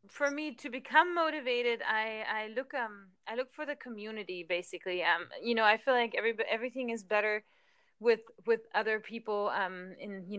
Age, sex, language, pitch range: 20-39, female, English, 185-230 Hz